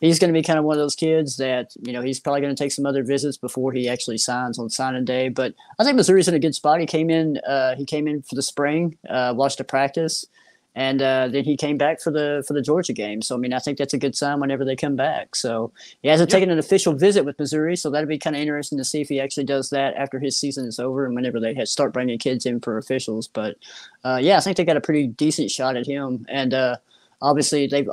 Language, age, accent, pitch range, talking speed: English, 30-49, American, 135-155 Hz, 275 wpm